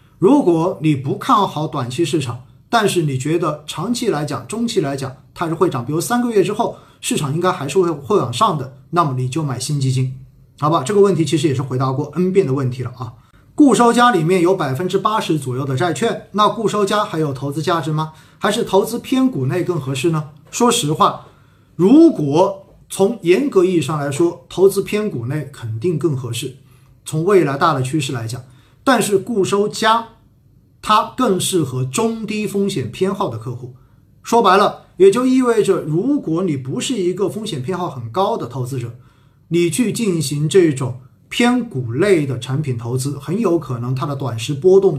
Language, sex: Chinese, male